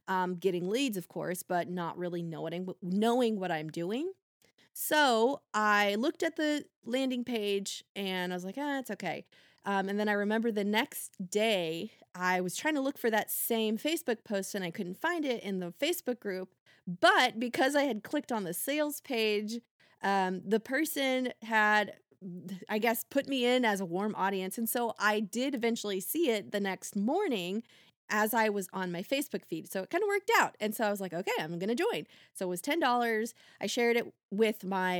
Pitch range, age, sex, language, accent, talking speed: 185-245 Hz, 20-39, female, English, American, 200 wpm